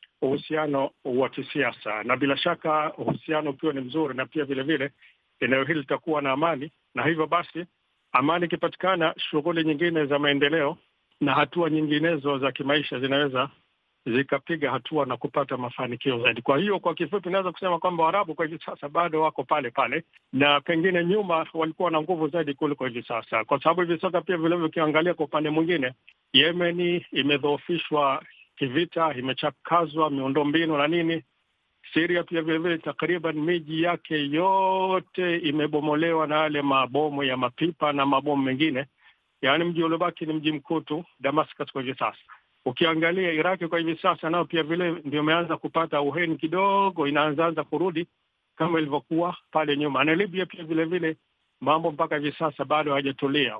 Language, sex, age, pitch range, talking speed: Swahili, male, 50-69, 145-170 Hz, 150 wpm